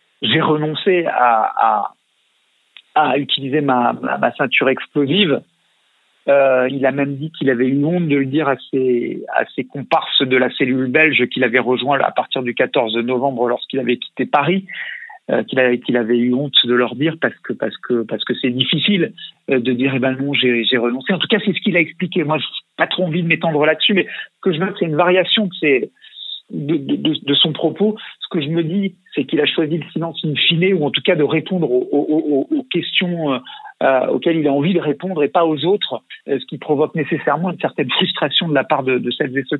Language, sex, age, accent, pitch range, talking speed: French, male, 50-69, French, 135-175 Hz, 230 wpm